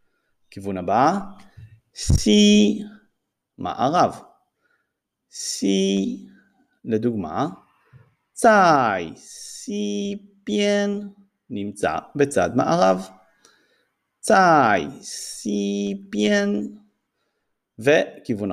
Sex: male